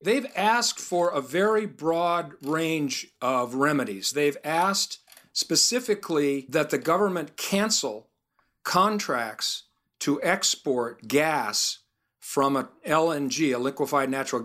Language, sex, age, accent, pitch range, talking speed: English, male, 40-59, American, 125-160 Hz, 110 wpm